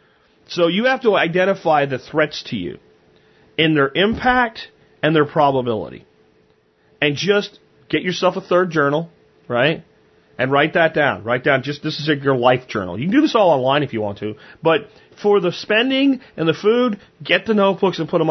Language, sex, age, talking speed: English, male, 40-59, 190 wpm